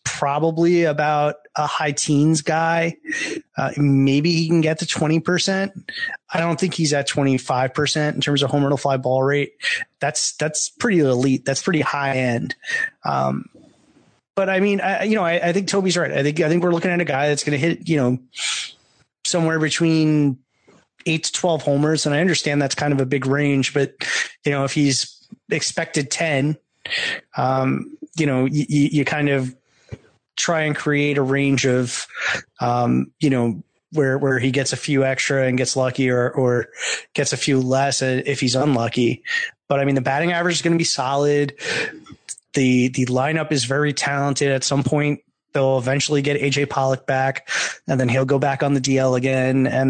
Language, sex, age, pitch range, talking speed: English, male, 30-49, 135-165 Hz, 190 wpm